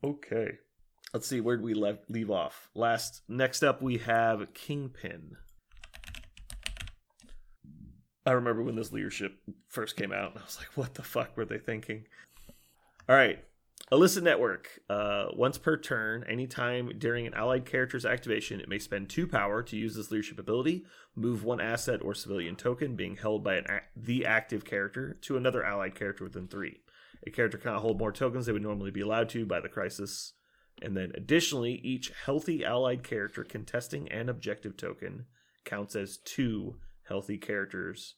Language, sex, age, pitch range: English, male, 30-49, 100-125 Hz